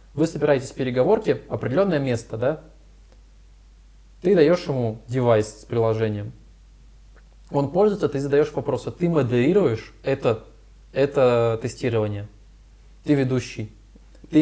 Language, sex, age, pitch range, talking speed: Russian, male, 20-39, 115-160 Hz, 110 wpm